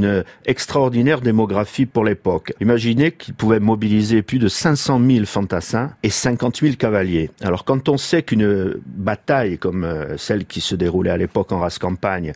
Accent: French